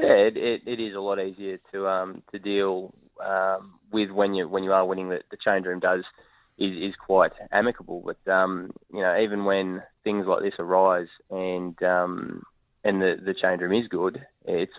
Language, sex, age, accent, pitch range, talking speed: English, male, 20-39, Australian, 90-100 Hz, 200 wpm